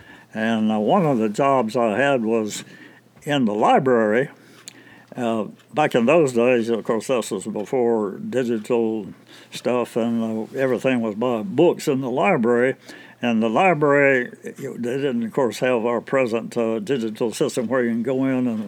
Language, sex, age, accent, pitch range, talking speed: English, male, 60-79, American, 115-135 Hz, 165 wpm